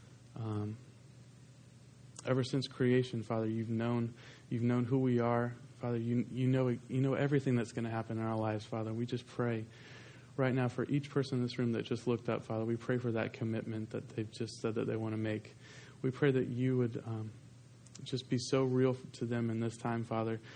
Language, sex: English, male